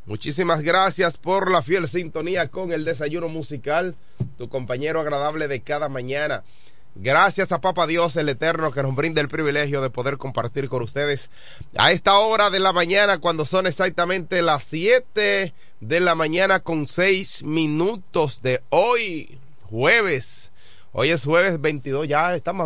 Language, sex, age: Spanish, male, 30-49